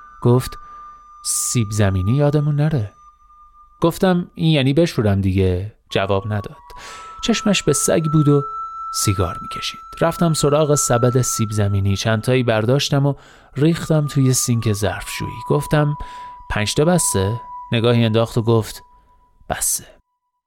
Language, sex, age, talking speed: Persian, male, 30-49, 120 wpm